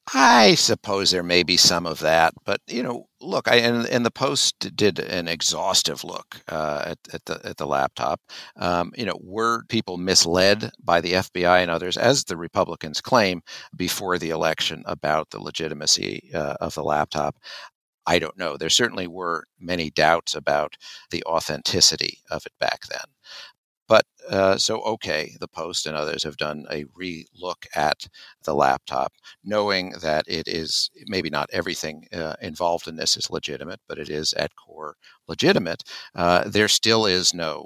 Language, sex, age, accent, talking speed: English, male, 50-69, American, 170 wpm